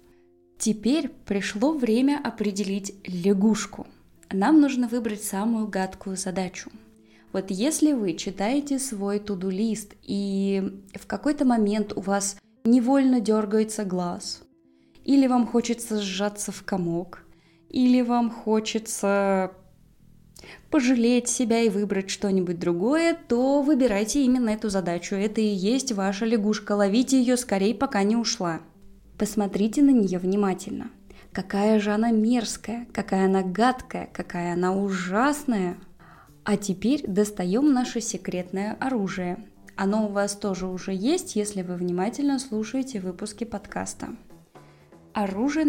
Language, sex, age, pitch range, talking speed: Russian, female, 20-39, 195-250 Hz, 120 wpm